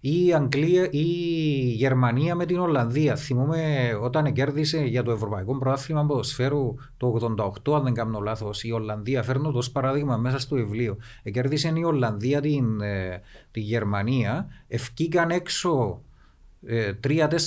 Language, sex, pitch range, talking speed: Greek, male, 120-165 Hz, 150 wpm